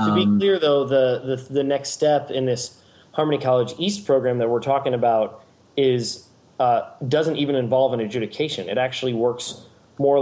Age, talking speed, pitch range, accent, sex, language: 30-49, 175 wpm, 115-140 Hz, American, male, English